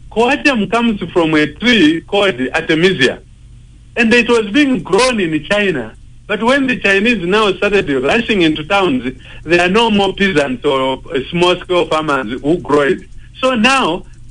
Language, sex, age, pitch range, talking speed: English, male, 60-79, 135-210 Hz, 150 wpm